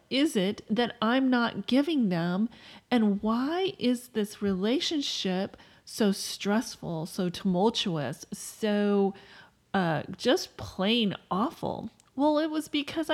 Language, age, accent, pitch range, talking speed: English, 40-59, American, 205-280 Hz, 115 wpm